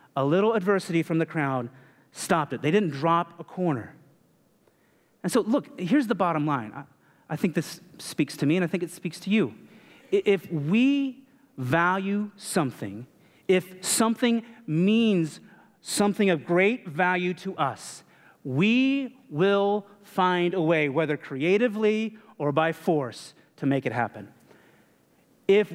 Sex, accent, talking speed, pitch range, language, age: male, American, 145 wpm, 145-200 Hz, English, 30-49